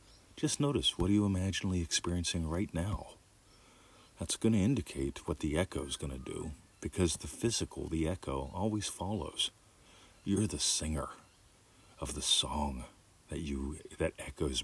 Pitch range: 75-100 Hz